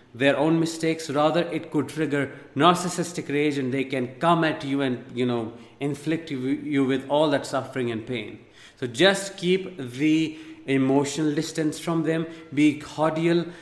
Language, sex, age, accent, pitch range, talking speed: English, male, 50-69, Indian, 135-165 Hz, 160 wpm